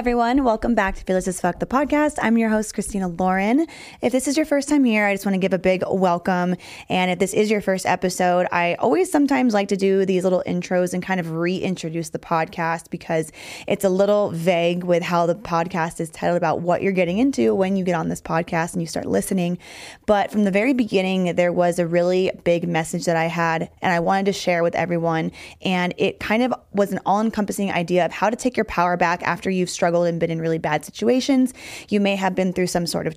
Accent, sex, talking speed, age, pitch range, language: American, female, 235 wpm, 20-39, 175-205 Hz, English